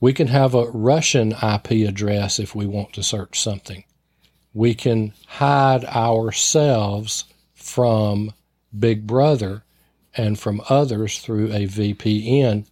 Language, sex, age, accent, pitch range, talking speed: English, male, 40-59, American, 110-135 Hz, 125 wpm